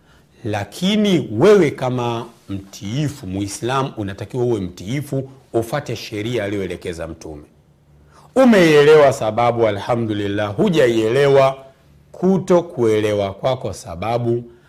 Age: 40-59